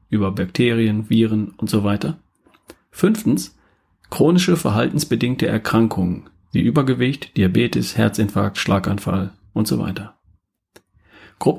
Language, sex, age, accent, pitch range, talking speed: German, male, 40-59, German, 110-145 Hz, 100 wpm